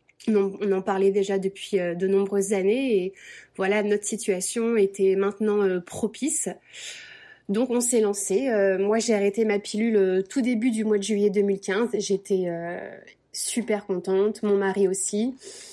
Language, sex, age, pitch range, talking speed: French, female, 20-39, 195-225 Hz, 140 wpm